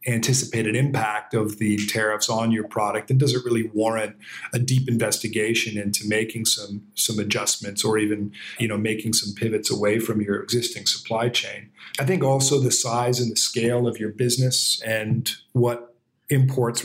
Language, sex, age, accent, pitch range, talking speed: English, male, 40-59, American, 110-125 Hz, 170 wpm